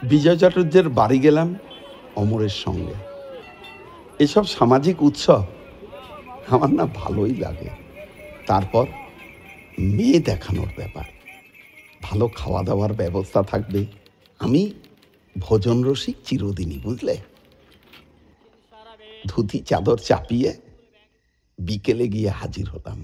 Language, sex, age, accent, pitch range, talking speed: Bengali, male, 60-79, native, 100-145 Hz, 90 wpm